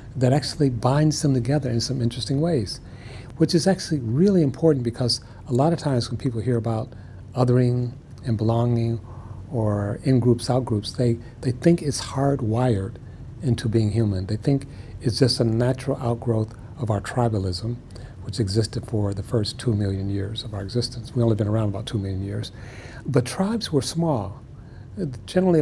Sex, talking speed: male, 165 wpm